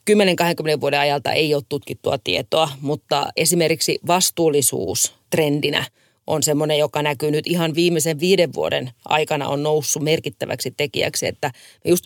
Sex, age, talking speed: female, 30-49, 130 wpm